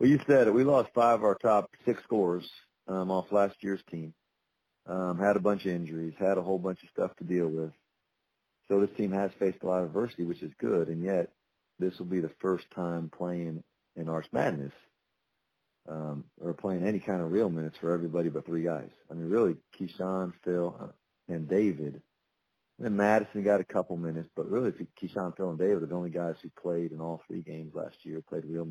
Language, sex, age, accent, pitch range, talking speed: English, male, 40-59, American, 80-95 Hz, 215 wpm